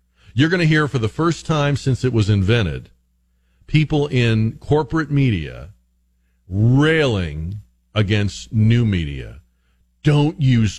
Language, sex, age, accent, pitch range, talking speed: English, male, 50-69, American, 80-130 Hz, 120 wpm